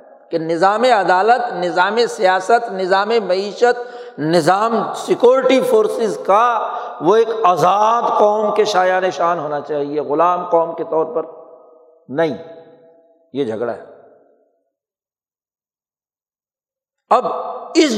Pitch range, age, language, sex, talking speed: 180-265 Hz, 60-79, Urdu, male, 105 wpm